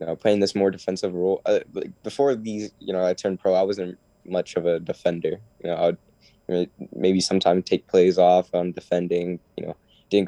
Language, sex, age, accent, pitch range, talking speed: English, male, 10-29, American, 90-100 Hz, 195 wpm